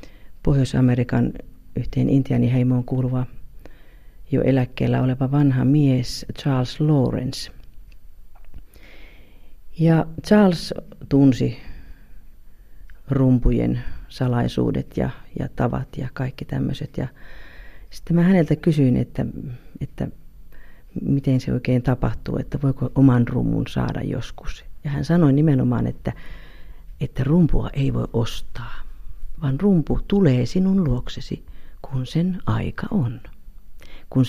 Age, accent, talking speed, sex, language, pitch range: 50-69, native, 100 wpm, female, Finnish, 120-155 Hz